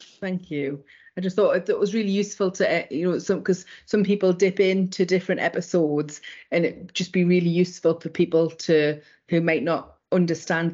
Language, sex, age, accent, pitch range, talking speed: English, female, 30-49, British, 165-195 Hz, 185 wpm